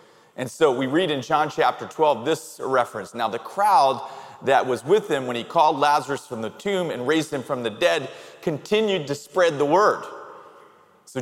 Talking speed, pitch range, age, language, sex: 195 wpm, 120-155 Hz, 30-49, English, male